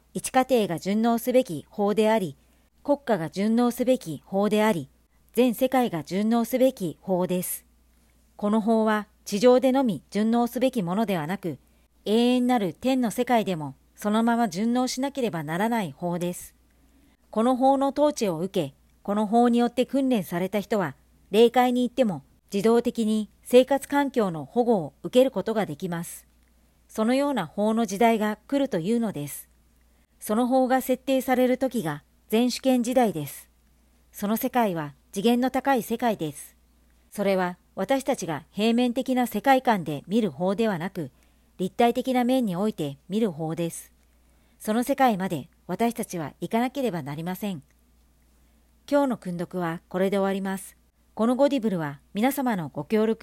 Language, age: Japanese, 40-59